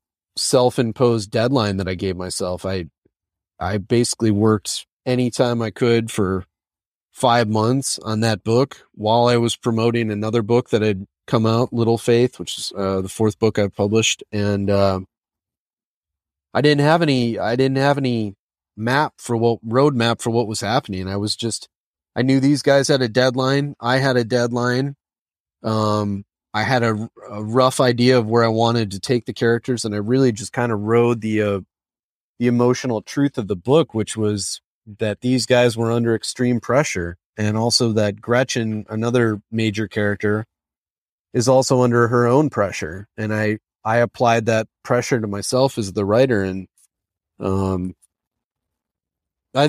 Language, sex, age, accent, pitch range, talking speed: English, male, 30-49, American, 100-125 Hz, 170 wpm